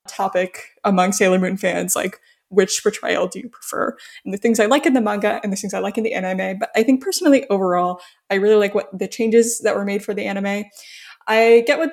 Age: 10-29